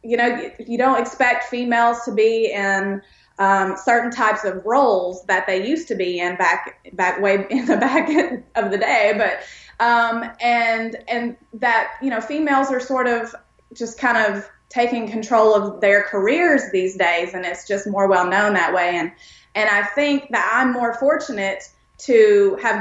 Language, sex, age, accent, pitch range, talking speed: English, female, 20-39, American, 195-235 Hz, 180 wpm